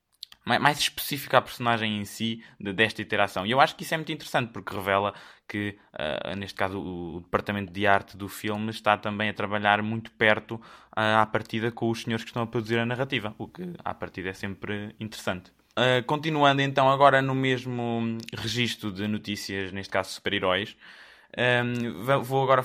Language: Portuguese